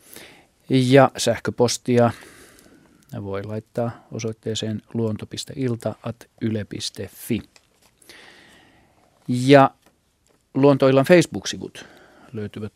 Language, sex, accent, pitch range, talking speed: Finnish, male, native, 110-125 Hz, 55 wpm